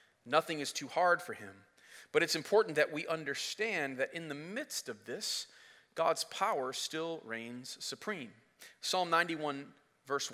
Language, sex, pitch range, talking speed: English, male, 120-160 Hz, 150 wpm